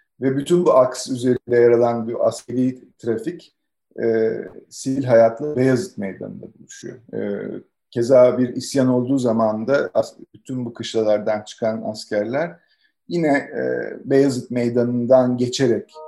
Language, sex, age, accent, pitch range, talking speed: Turkish, male, 50-69, native, 115-140 Hz, 125 wpm